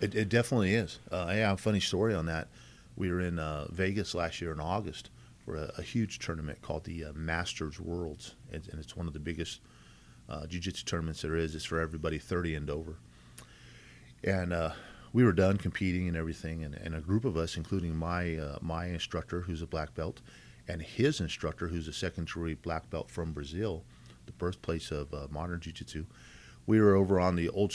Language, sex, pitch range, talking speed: English, male, 80-95 Hz, 200 wpm